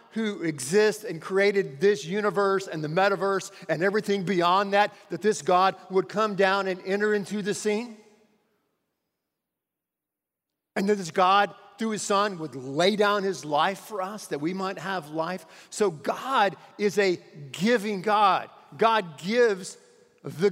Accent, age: American, 50-69